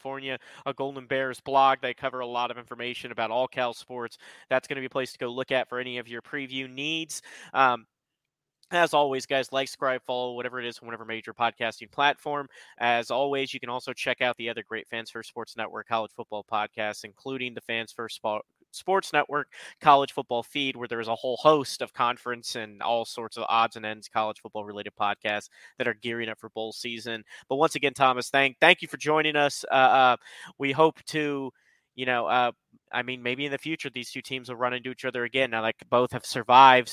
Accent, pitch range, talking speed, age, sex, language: American, 115-140 Hz, 220 wpm, 30-49, male, English